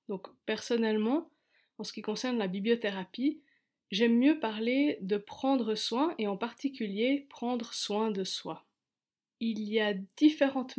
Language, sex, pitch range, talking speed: French, female, 205-255 Hz, 140 wpm